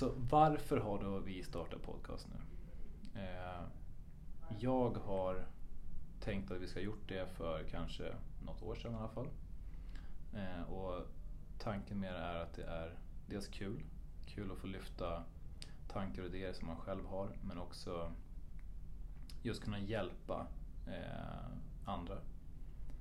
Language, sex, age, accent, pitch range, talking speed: Swedish, male, 20-39, native, 80-100 Hz, 130 wpm